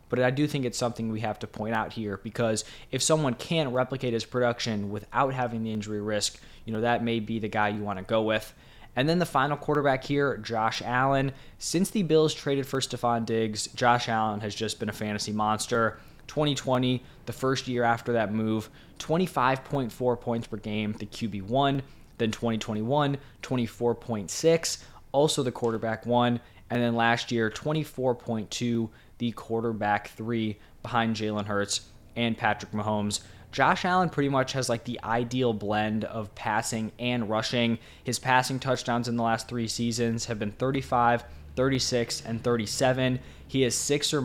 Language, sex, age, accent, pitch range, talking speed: English, male, 20-39, American, 110-130 Hz, 170 wpm